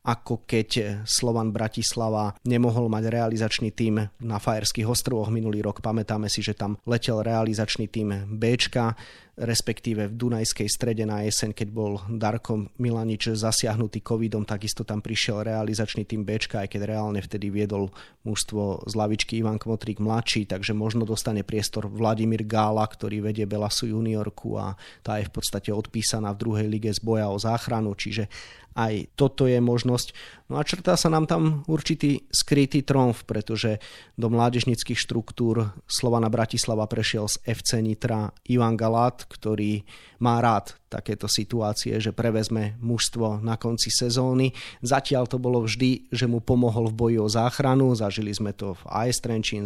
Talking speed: 150 wpm